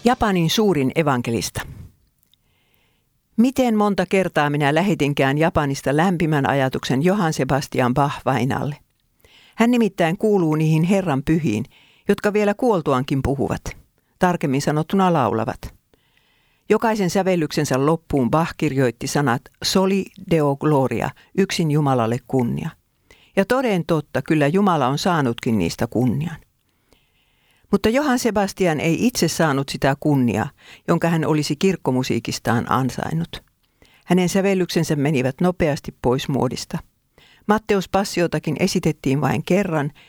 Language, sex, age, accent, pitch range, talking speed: Finnish, female, 50-69, native, 135-190 Hz, 110 wpm